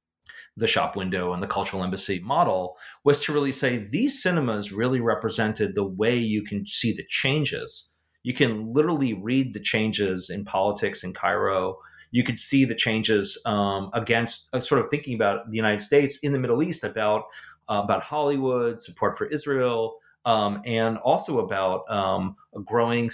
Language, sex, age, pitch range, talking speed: English, male, 40-59, 100-135 Hz, 170 wpm